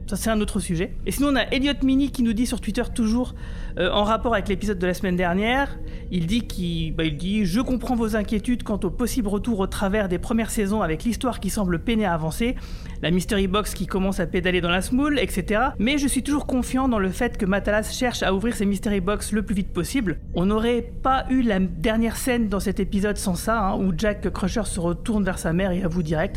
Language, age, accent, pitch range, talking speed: French, 40-59, French, 185-235 Hz, 250 wpm